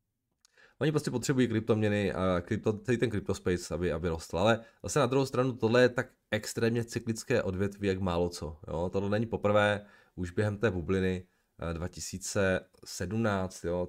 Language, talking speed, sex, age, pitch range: Czech, 145 wpm, male, 20-39, 85-115 Hz